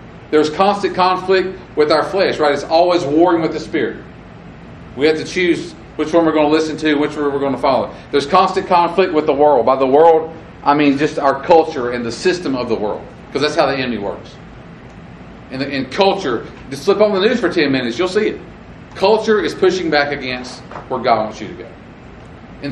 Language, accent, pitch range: English, American, 145-190 Hz